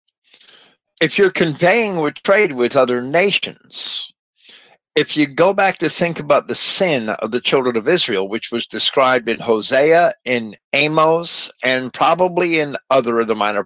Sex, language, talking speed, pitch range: male, English, 160 wpm, 120-165 Hz